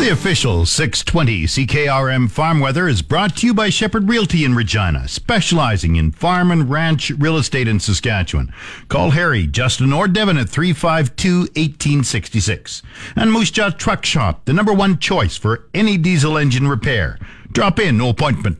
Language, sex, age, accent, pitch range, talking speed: English, male, 50-69, American, 115-165 Hz, 160 wpm